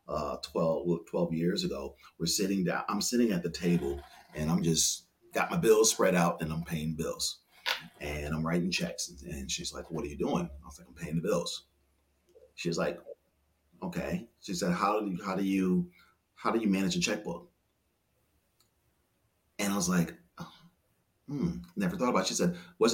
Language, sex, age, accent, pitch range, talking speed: English, male, 40-59, American, 85-110 Hz, 190 wpm